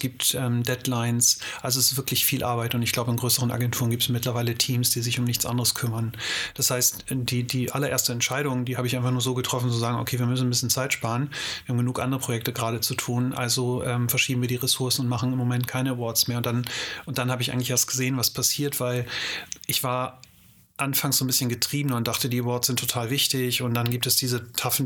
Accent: German